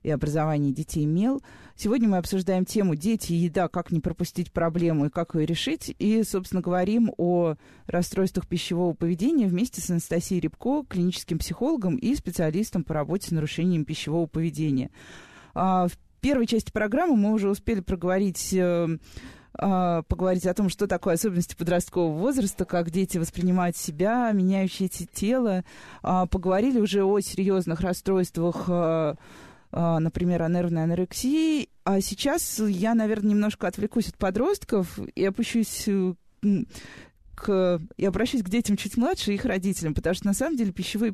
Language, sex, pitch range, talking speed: Russian, female, 170-215 Hz, 145 wpm